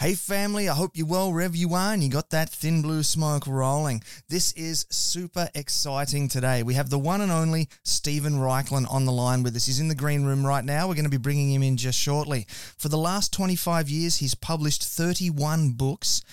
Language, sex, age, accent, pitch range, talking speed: English, male, 30-49, Australian, 130-160 Hz, 220 wpm